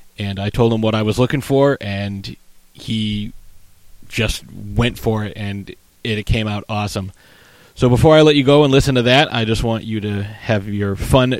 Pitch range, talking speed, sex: 105-125 Hz, 200 wpm, male